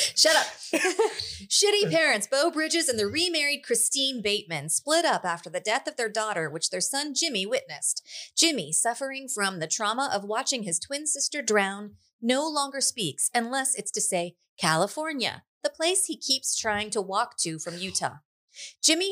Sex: female